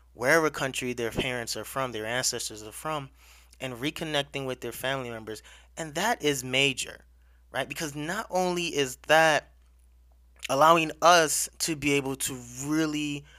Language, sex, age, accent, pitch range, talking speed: English, male, 20-39, American, 115-145 Hz, 150 wpm